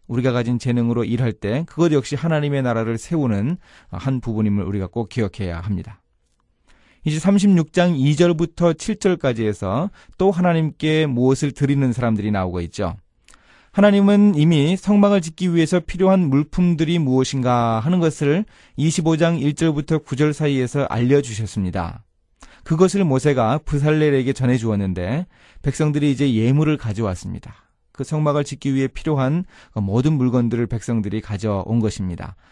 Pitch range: 115-165 Hz